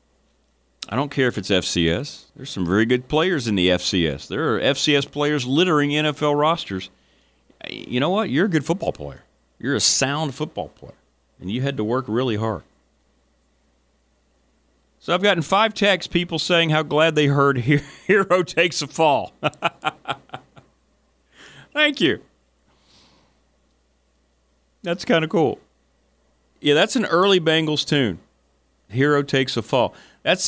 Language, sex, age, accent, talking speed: English, male, 40-59, American, 145 wpm